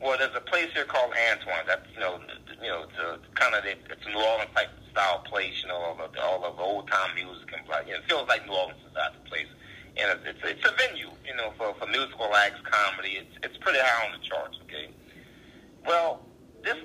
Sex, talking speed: male, 245 wpm